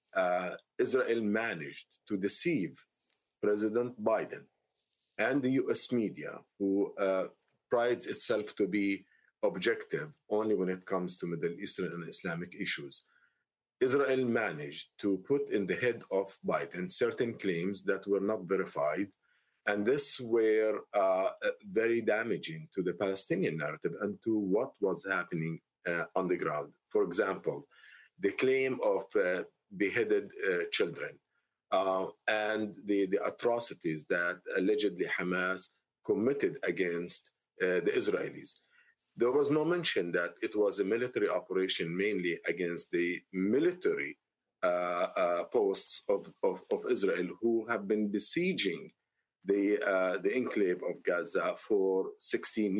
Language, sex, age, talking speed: English, male, 50-69, 135 wpm